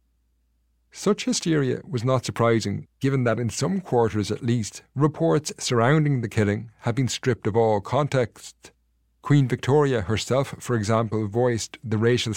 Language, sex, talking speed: English, male, 145 wpm